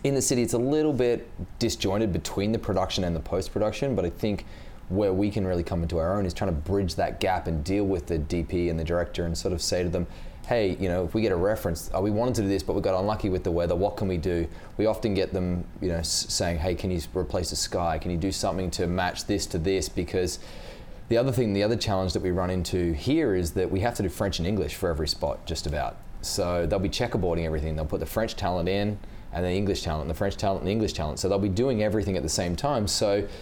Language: English